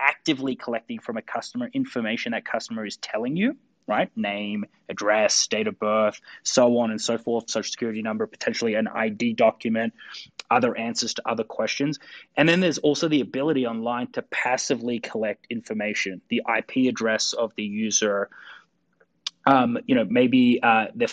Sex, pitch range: male, 115-175 Hz